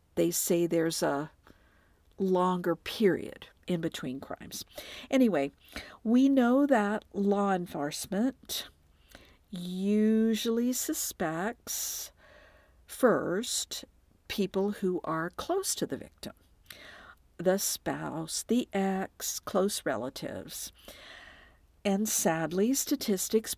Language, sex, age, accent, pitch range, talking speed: English, female, 50-69, American, 180-245 Hz, 85 wpm